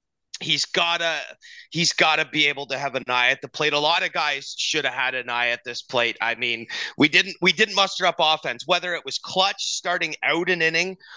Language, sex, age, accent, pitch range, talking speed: English, male, 30-49, American, 140-190 Hz, 225 wpm